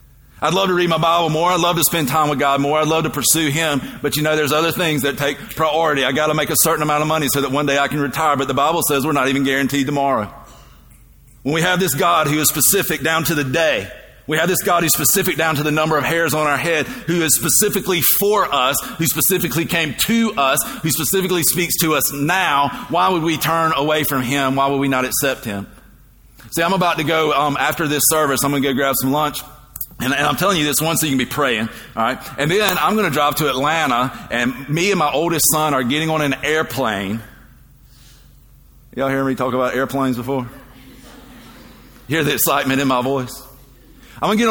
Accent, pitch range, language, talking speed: American, 135-165 Hz, English, 235 wpm